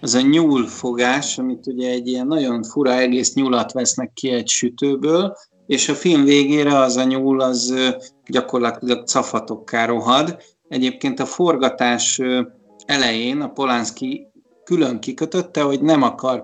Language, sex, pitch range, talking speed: Hungarian, male, 120-150 Hz, 140 wpm